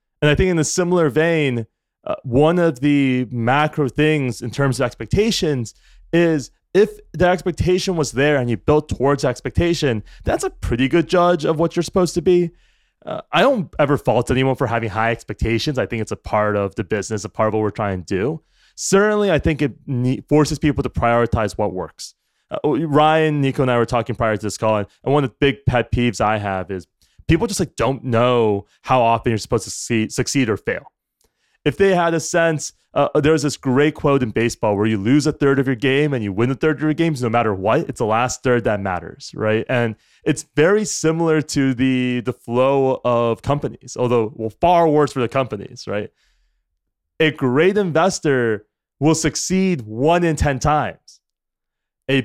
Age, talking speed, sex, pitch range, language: 20-39, 200 wpm, male, 115-155 Hz, English